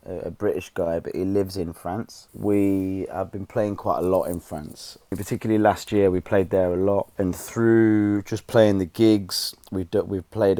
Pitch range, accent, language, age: 90-115 Hz, British, English, 30-49